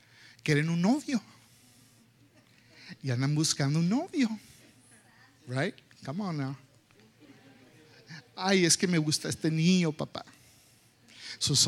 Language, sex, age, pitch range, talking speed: Spanish, male, 50-69, 130-205 Hz, 110 wpm